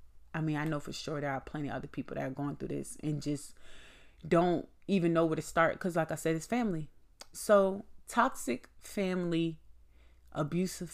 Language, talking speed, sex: English, 190 wpm, female